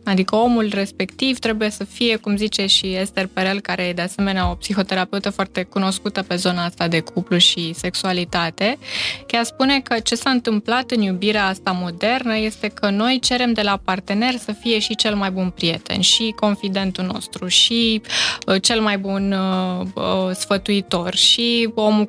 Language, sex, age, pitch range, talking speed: Romanian, female, 20-39, 190-230 Hz, 165 wpm